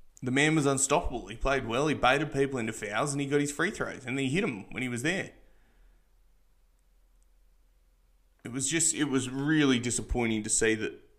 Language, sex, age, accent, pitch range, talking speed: English, male, 20-39, Australian, 110-135 Hz, 200 wpm